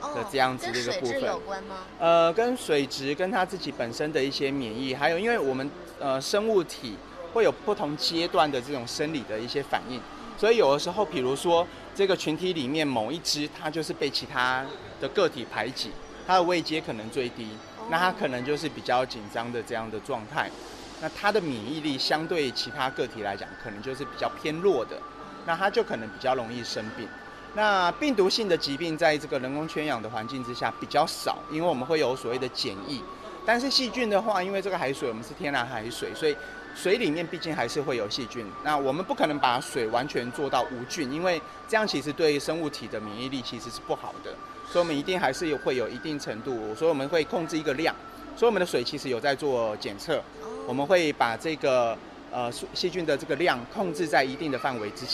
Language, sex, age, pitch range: Chinese, male, 30-49, 135-190 Hz